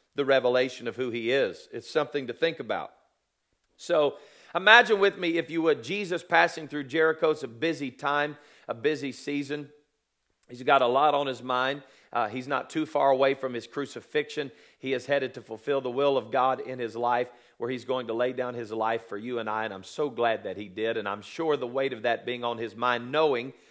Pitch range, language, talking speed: 125-165 Hz, English, 225 wpm